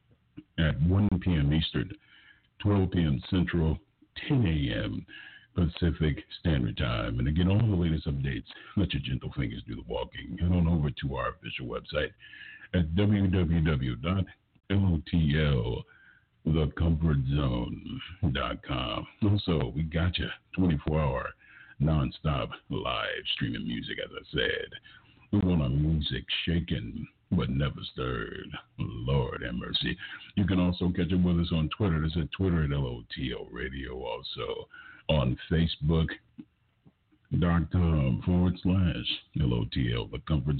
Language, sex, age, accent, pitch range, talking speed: English, male, 60-79, American, 75-90 Hz, 130 wpm